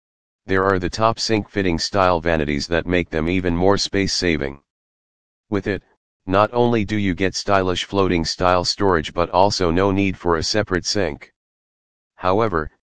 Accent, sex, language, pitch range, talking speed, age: American, male, English, 80-100 Hz, 150 wpm, 40-59